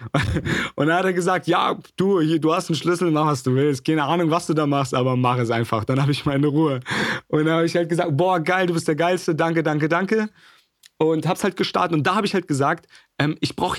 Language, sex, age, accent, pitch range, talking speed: German, male, 40-59, German, 135-170 Hz, 260 wpm